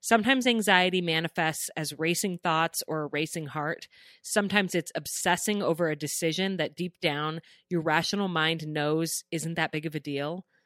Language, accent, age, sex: English, American, 30-49, female